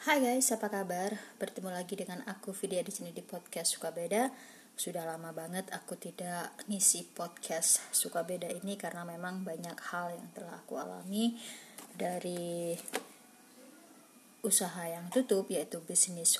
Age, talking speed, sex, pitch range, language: 20-39, 145 wpm, female, 180-240 Hz, Indonesian